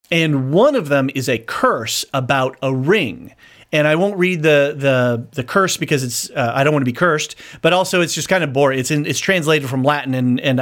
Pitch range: 130-155 Hz